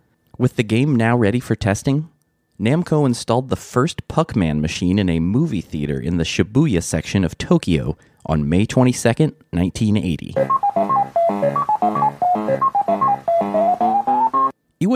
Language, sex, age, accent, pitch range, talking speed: English, male, 30-49, American, 90-140 Hz, 110 wpm